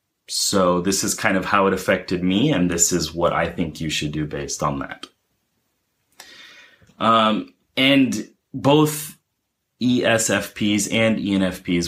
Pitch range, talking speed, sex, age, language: 85-115 Hz, 135 wpm, male, 30-49, English